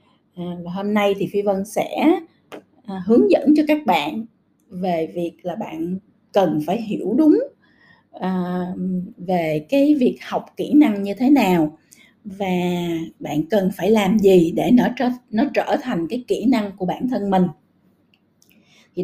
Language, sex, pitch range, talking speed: Vietnamese, female, 185-255 Hz, 165 wpm